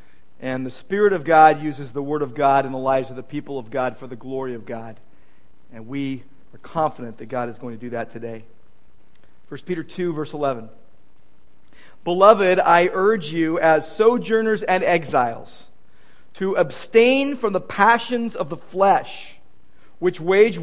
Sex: male